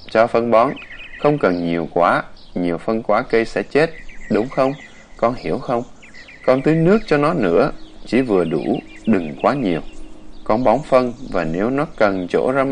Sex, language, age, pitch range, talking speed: male, Vietnamese, 20-39, 110-145 Hz, 185 wpm